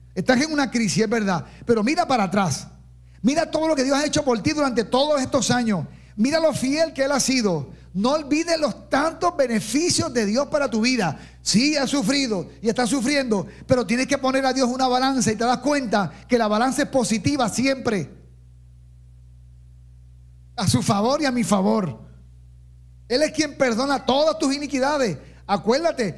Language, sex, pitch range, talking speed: Spanish, male, 185-275 Hz, 180 wpm